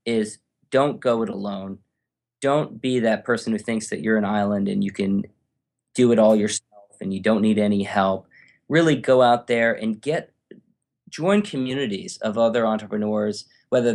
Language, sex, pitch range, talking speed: English, male, 105-125 Hz, 170 wpm